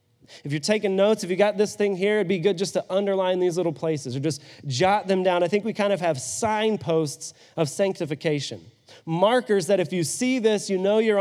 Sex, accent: male, American